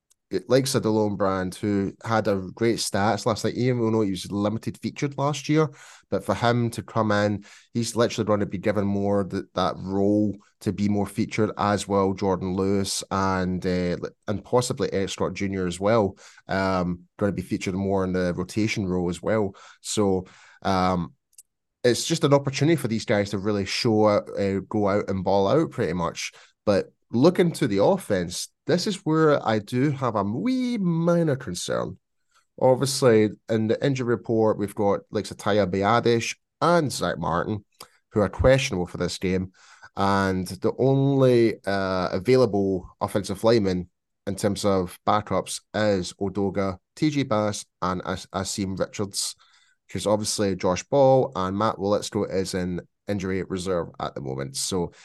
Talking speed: 170 wpm